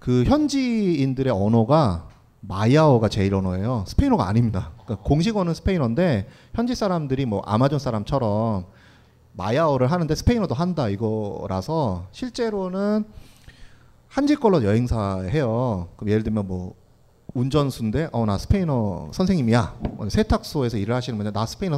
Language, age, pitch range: Korean, 30-49, 105-155 Hz